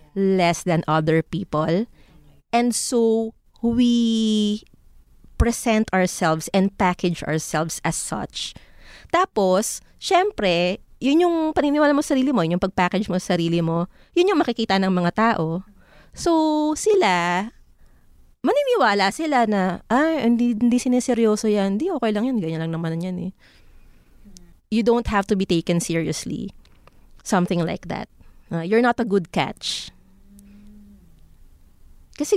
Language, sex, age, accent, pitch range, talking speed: Filipino, female, 20-39, native, 175-250 Hz, 130 wpm